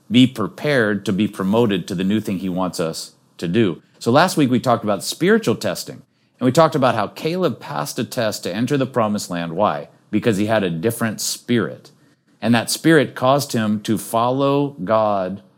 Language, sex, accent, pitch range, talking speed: English, male, American, 100-130 Hz, 195 wpm